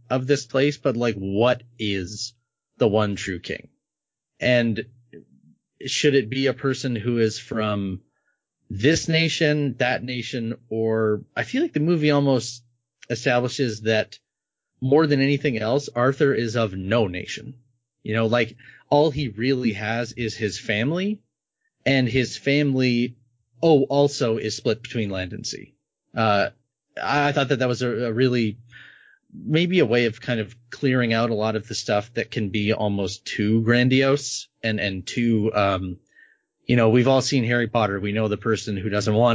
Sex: male